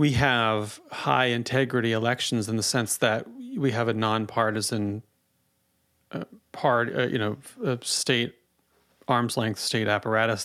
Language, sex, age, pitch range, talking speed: English, male, 40-59, 110-135 Hz, 140 wpm